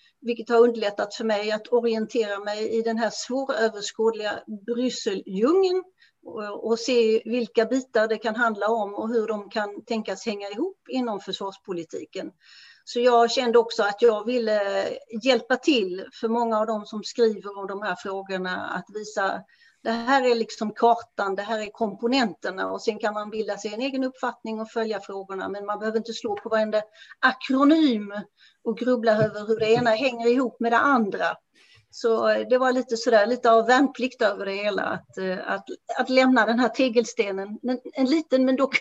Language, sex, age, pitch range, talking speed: English, female, 40-59, 210-250 Hz, 175 wpm